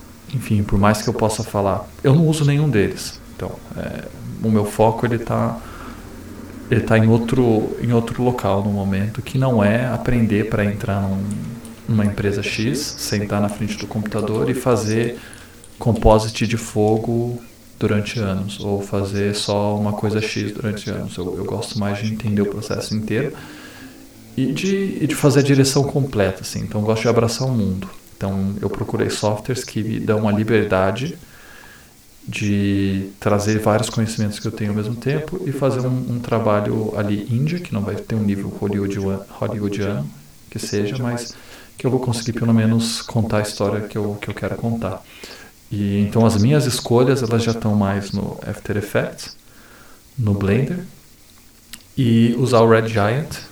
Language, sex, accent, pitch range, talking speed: Portuguese, male, Brazilian, 105-120 Hz, 170 wpm